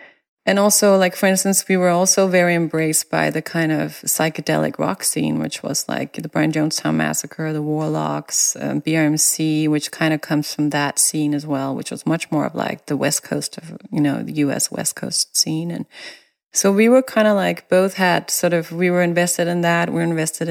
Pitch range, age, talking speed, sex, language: 155-195 Hz, 30-49, 215 wpm, female, English